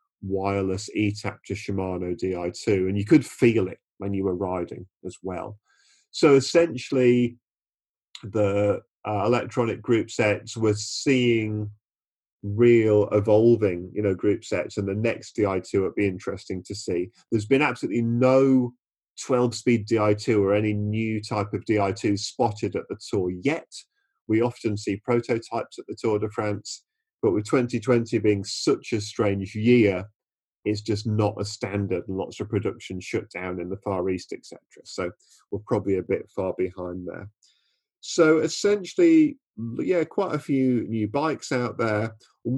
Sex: male